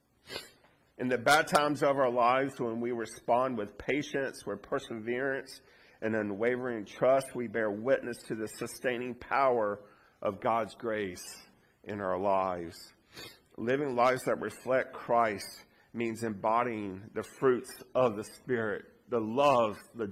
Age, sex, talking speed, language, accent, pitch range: 50-69, male, 135 wpm, English, American, 110-140 Hz